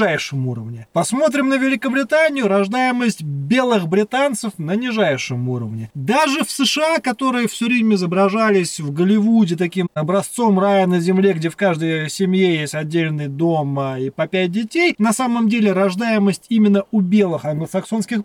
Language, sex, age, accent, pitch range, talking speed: Russian, male, 20-39, native, 175-230 Hz, 140 wpm